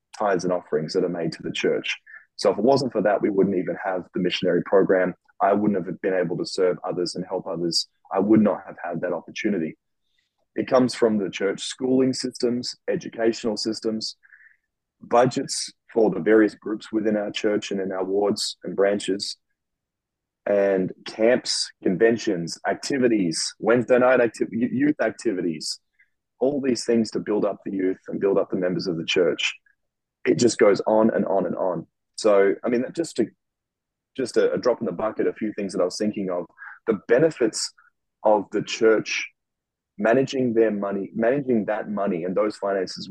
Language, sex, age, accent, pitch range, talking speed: English, male, 20-39, Australian, 100-120 Hz, 180 wpm